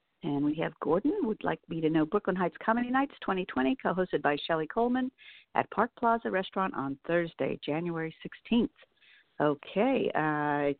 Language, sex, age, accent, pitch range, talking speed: English, female, 50-69, American, 175-240 Hz, 155 wpm